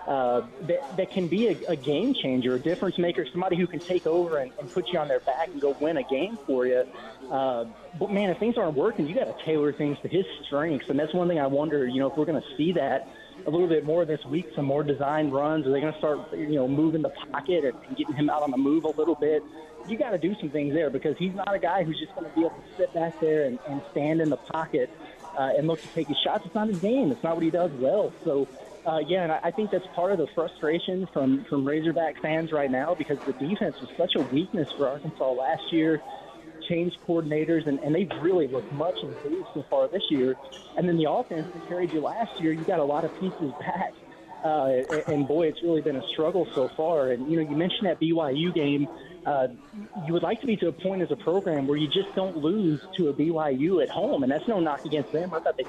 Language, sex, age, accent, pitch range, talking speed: English, male, 20-39, American, 145-180 Hz, 260 wpm